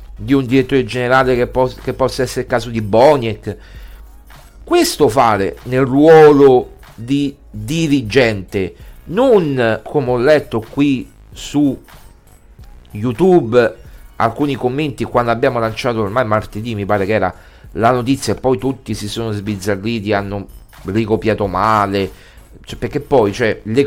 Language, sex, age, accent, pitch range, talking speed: Italian, male, 40-59, native, 105-140 Hz, 135 wpm